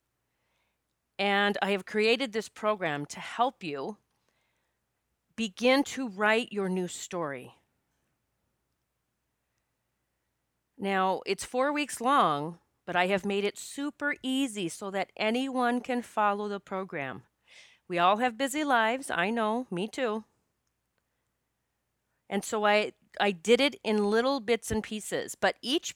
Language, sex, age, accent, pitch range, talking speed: English, female, 40-59, American, 180-230 Hz, 130 wpm